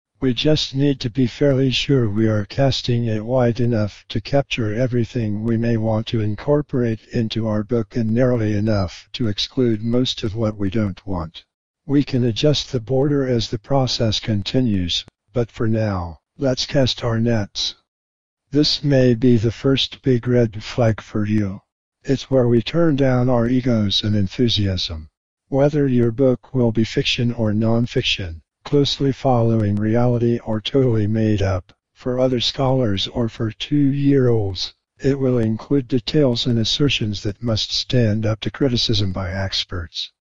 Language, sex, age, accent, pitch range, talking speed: English, male, 60-79, American, 105-130 Hz, 155 wpm